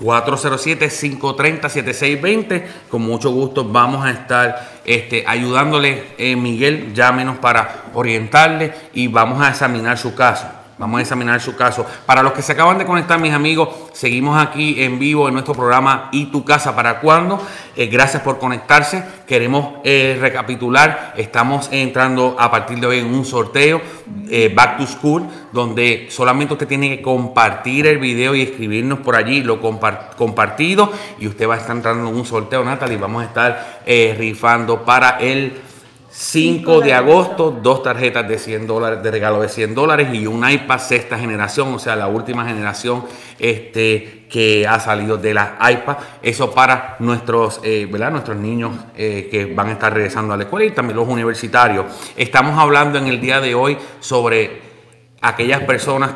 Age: 30-49